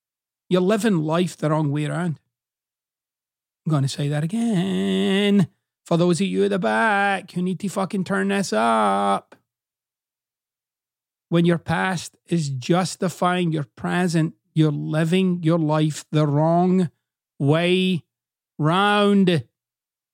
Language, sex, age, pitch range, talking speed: English, male, 40-59, 150-185 Hz, 125 wpm